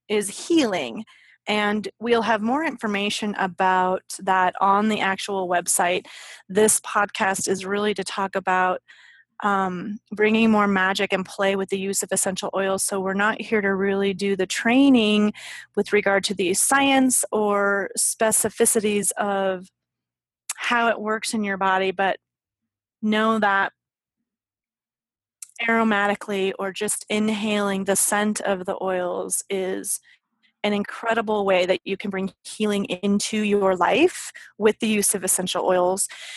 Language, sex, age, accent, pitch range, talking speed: English, female, 30-49, American, 195-225 Hz, 140 wpm